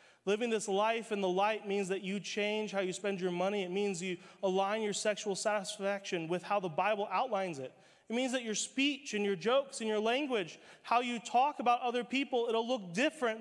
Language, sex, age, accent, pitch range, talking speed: English, male, 30-49, American, 175-215 Hz, 215 wpm